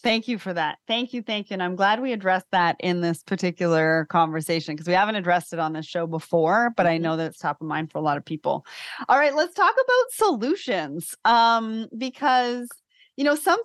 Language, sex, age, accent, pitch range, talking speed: English, female, 30-49, American, 180-255 Hz, 225 wpm